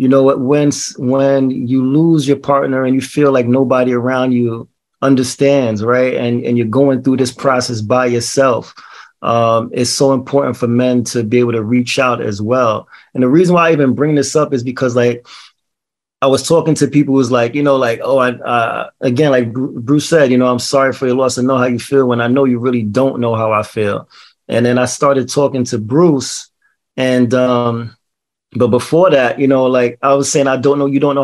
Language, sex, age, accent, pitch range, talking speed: English, male, 30-49, American, 120-135 Hz, 225 wpm